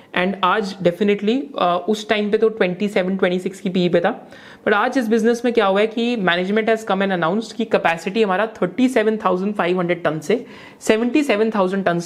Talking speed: 160 wpm